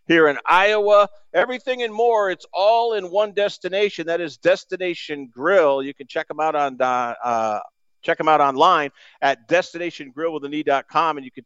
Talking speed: 160 wpm